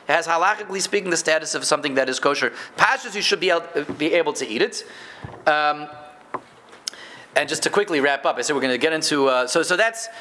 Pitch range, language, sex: 155-225 Hz, English, male